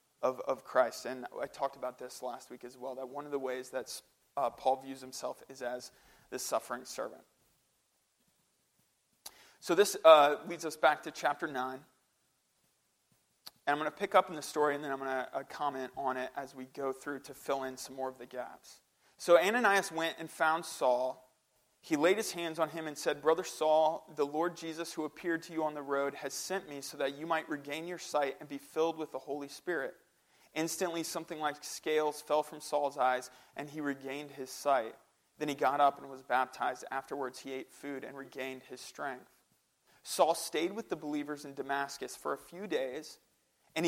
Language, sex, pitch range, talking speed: English, male, 135-165 Hz, 205 wpm